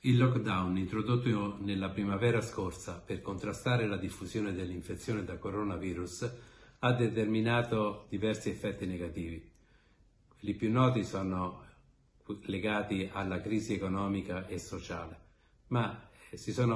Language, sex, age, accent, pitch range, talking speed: Italian, male, 50-69, native, 90-110 Hz, 110 wpm